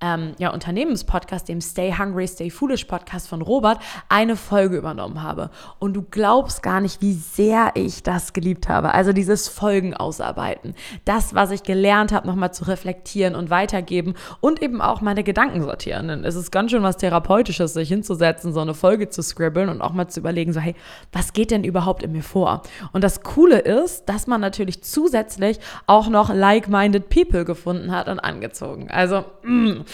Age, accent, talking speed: 20-39, German, 185 wpm